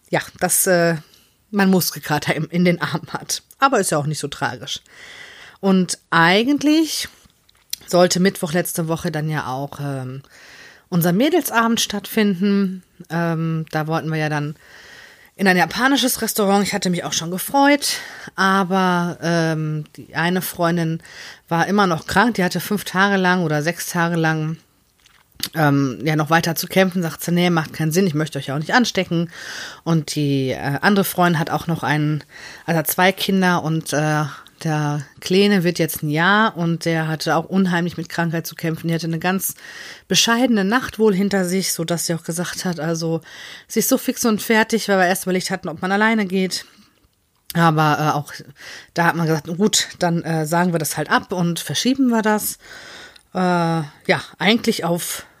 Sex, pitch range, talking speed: female, 160-195 Hz, 180 wpm